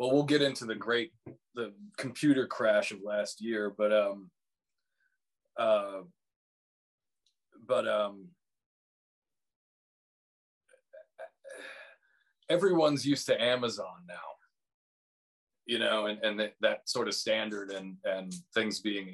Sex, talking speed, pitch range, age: male, 110 wpm, 100-125 Hz, 30-49